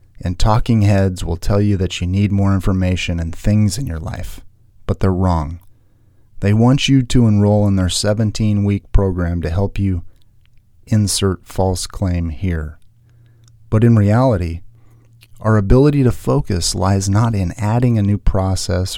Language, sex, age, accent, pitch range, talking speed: English, male, 30-49, American, 90-110 Hz, 155 wpm